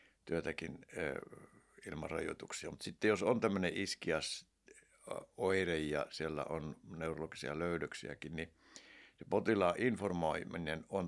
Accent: native